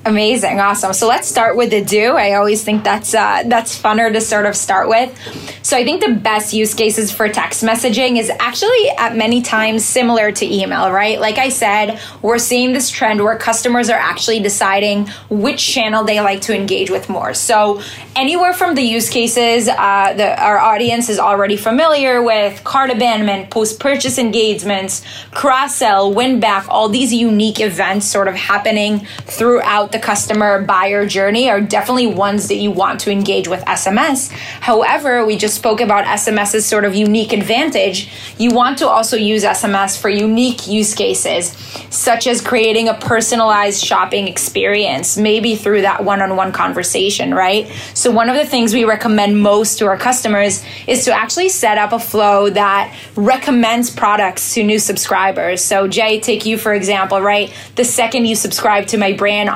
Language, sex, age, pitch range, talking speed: English, female, 10-29, 205-235 Hz, 175 wpm